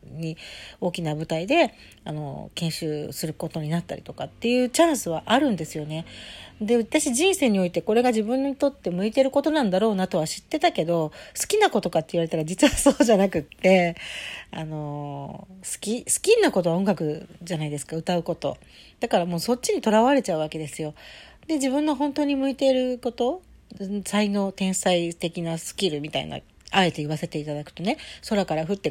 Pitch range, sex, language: 165-240 Hz, female, Japanese